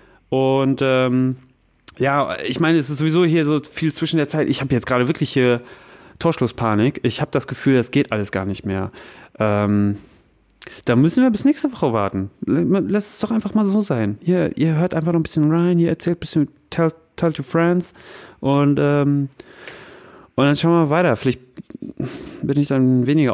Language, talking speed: German, 195 wpm